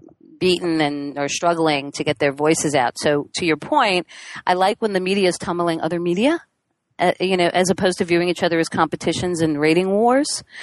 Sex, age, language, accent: female, 40-59, English, American